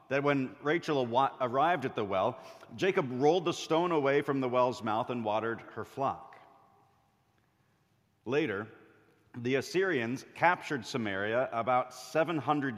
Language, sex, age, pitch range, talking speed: English, male, 50-69, 115-145 Hz, 125 wpm